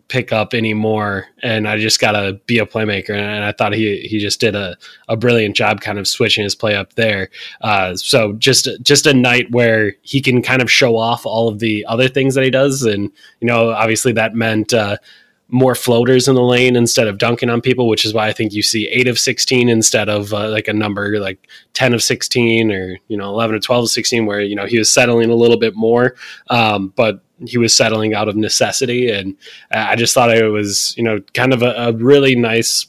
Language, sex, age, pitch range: English, male, 20-39, 105-120 Hz